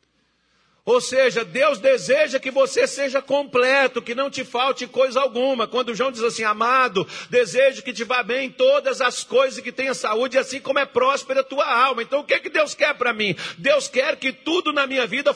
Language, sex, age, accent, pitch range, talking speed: Portuguese, male, 50-69, Brazilian, 235-285 Hz, 205 wpm